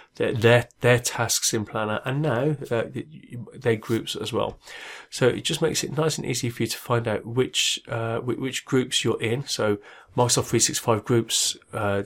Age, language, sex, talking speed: 30-49, English, male, 185 wpm